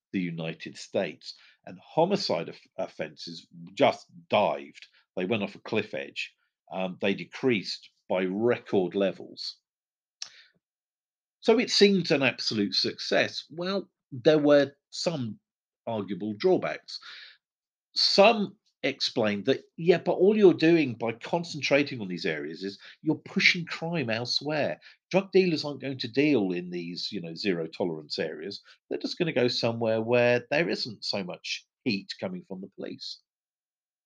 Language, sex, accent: English, male, British